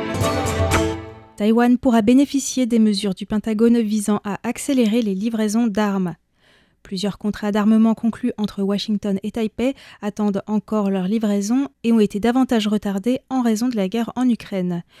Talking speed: 150 wpm